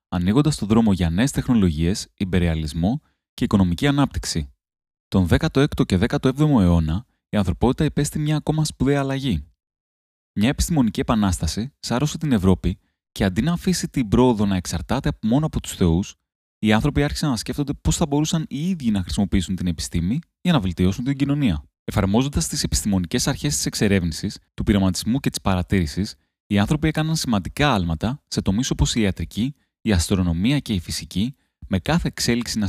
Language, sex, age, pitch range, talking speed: Greek, male, 20-39, 90-145 Hz, 165 wpm